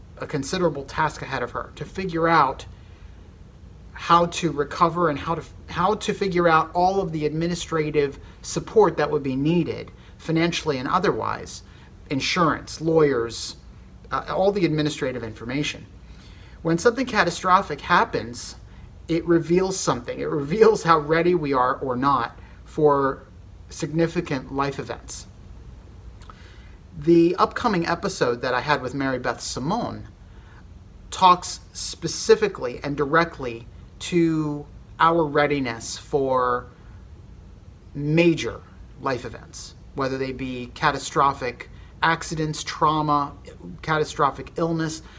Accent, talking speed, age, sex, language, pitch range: American, 115 wpm, 40-59, male, English, 115-170 Hz